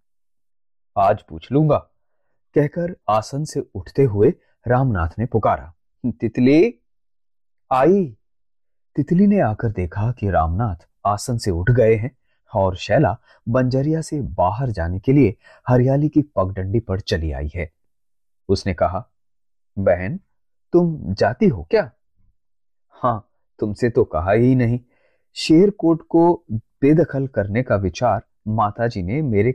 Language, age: Hindi, 30-49